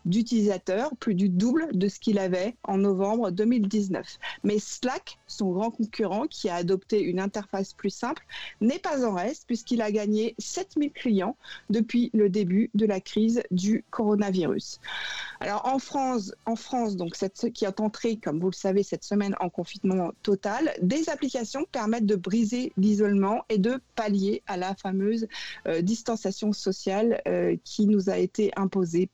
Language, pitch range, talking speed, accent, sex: French, 195-235 Hz, 165 wpm, French, female